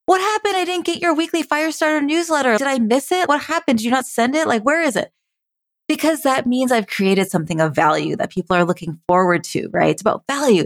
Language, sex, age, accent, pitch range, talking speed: English, female, 30-49, American, 190-275 Hz, 235 wpm